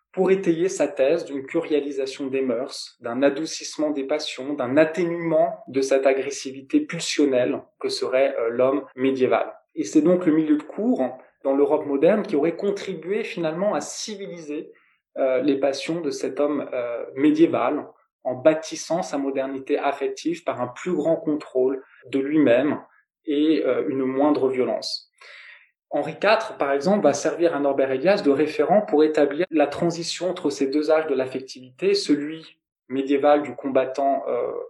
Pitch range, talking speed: 140-180 Hz, 150 wpm